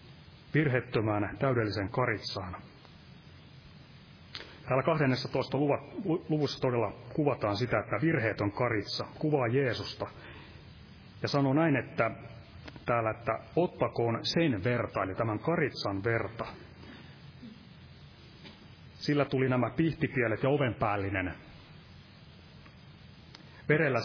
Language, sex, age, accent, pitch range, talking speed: Finnish, male, 30-49, native, 110-140 Hz, 85 wpm